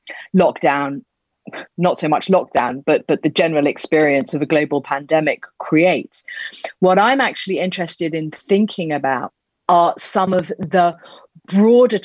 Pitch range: 170-225 Hz